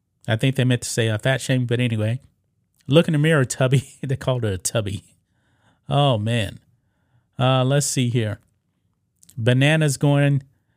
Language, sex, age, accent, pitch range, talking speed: English, male, 30-49, American, 115-145 Hz, 165 wpm